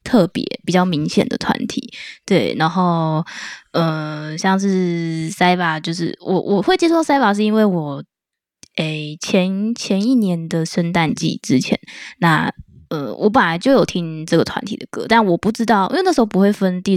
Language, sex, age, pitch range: Chinese, female, 10-29, 170-215 Hz